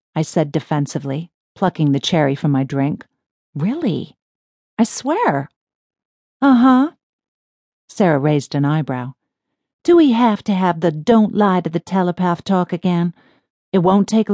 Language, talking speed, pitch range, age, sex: English, 140 wpm, 160-230 Hz, 50-69, female